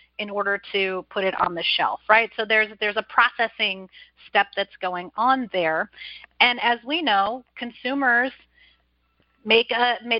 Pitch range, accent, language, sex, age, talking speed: 205-245 Hz, American, English, female, 30-49, 155 wpm